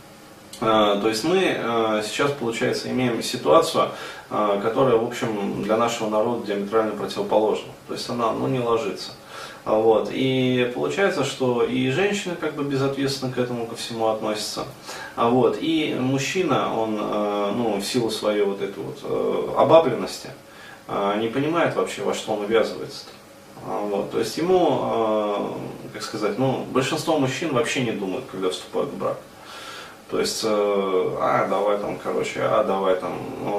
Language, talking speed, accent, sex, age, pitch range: Russian, 145 wpm, native, male, 20-39, 100-130 Hz